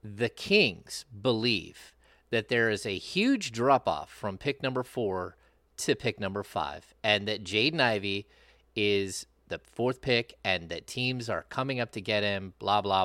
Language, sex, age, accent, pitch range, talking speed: English, male, 30-49, American, 100-140 Hz, 165 wpm